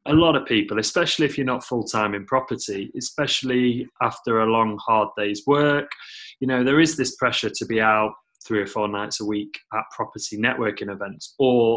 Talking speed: 195 wpm